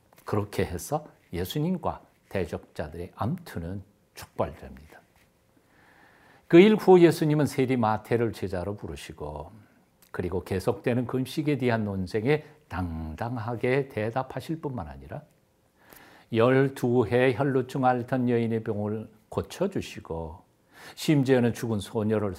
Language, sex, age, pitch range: Korean, male, 50-69, 100-150 Hz